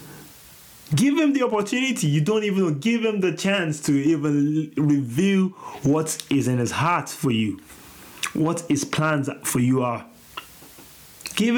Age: 30-49